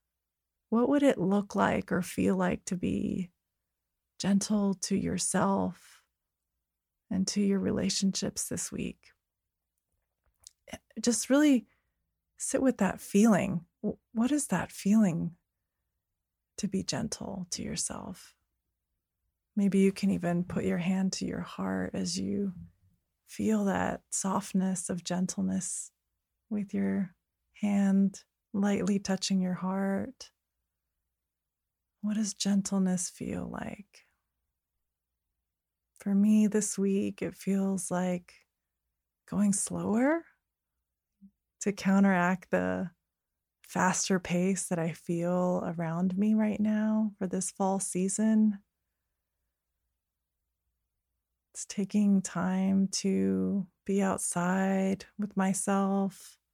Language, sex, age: English, female, 30-49